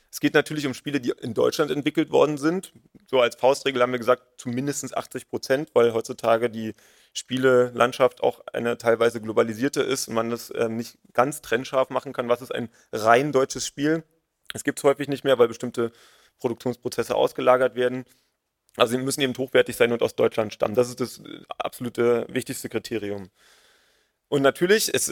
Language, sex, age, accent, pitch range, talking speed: German, male, 30-49, German, 120-140 Hz, 175 wpm